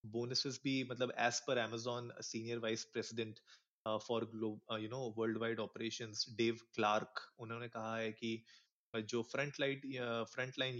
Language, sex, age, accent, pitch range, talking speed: Hindi, male, 30-49, native, 110-135 Hz, 155 wpm